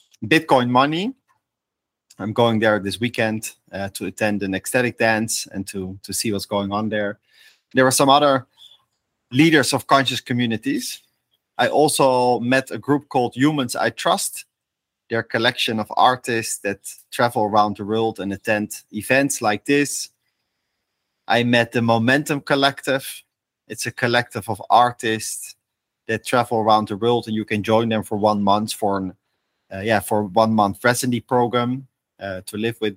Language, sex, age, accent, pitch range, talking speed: English, male, 30-49, Dutch, 105-125 Hz, 160 wpm